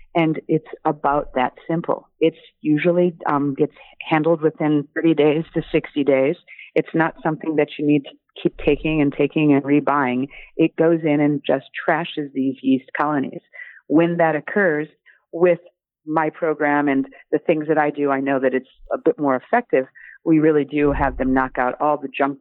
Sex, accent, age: female, American, 40-59